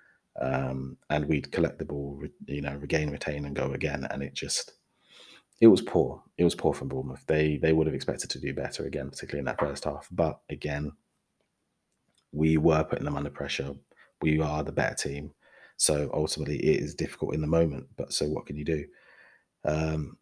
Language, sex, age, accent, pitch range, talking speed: English, male, 30-49, British, 70-80 Hz, 195 wpm